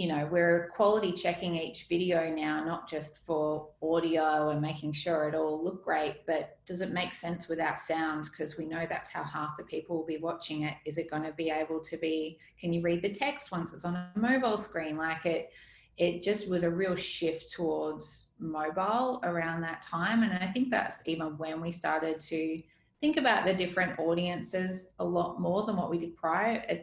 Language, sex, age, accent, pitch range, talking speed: English, female, 20-39, Australian, 160-180 Hz, 210 wpm